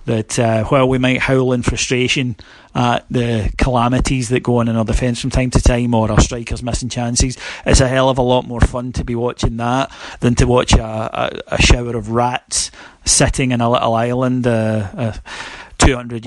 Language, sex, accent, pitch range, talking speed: English, male, British, 120-140 Hz, 205 wpm